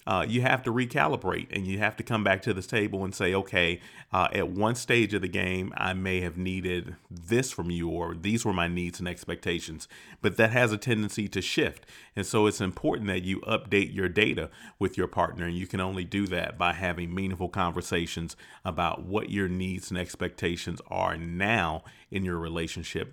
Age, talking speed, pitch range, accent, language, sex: 40-59, 200 wpm, 85-100 Hz, American, English, male